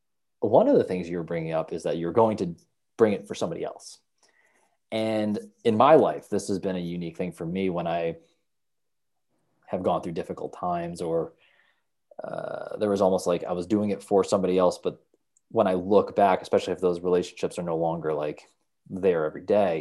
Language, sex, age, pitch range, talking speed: English, male, 20-39, 90-115 Hz, 195 wpm